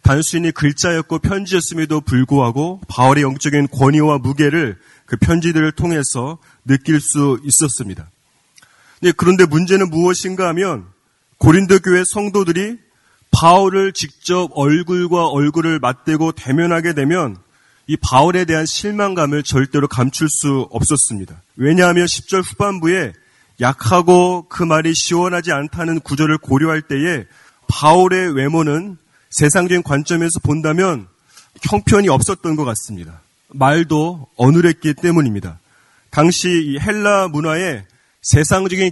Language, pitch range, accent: Korean, 140-175 Hz, native